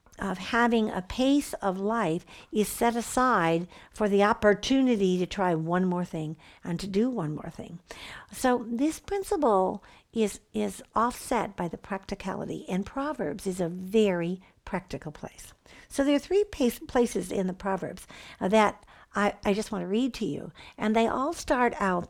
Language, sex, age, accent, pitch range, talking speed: English, female, 60-79, American, 190-240 Hz, 170 wpm